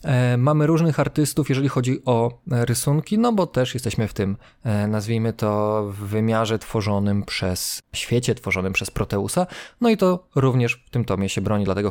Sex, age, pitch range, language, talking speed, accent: male, 20-39, 110-135 Hz, Polish, 165 wpm, native